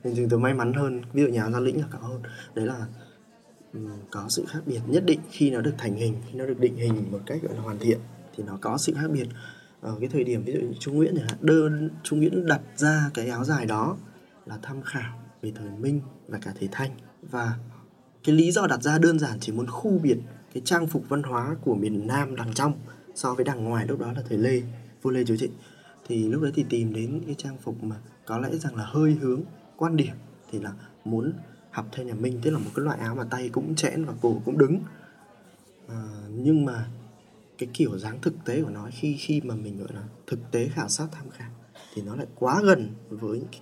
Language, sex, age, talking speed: Vietnamese, male, 20-39, 240 wpm